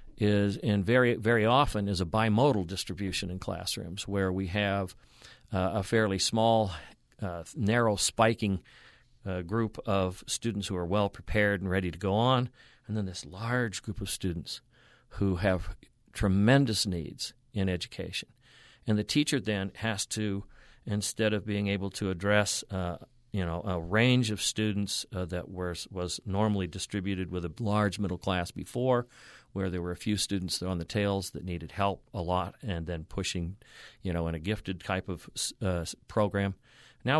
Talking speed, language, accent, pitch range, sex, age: 170 wpm, English, American, 90-110 Hz, male, 50-69